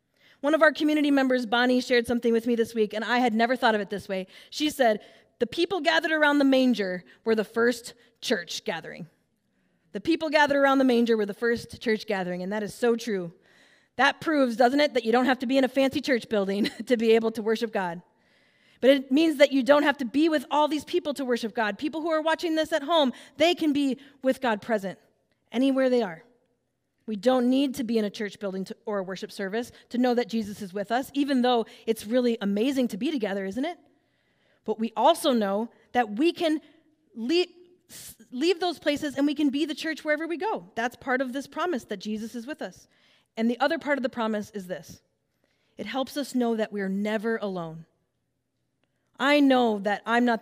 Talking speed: 220 wpm